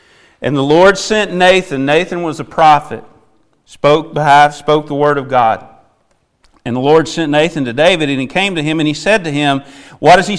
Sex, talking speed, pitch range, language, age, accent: male, 210 wpm, 155-220 Hz, English, 40-59, American